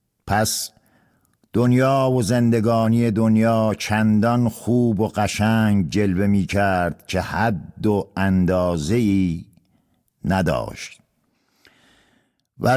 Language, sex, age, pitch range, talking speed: Persian, male, 50-69, 95-120 Hz, 80 wpm